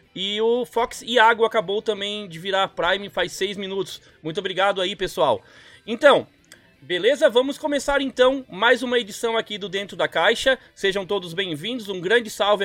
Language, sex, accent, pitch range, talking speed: Portuguese, male, Brazilian, 180-225 Hz, 170 wpm